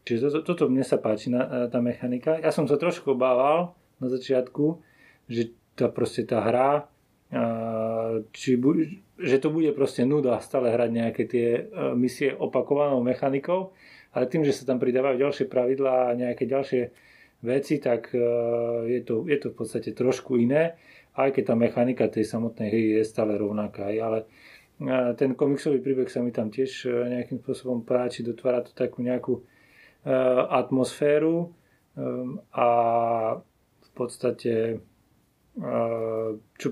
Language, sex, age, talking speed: Slovak, male, 30-49, 140 wpm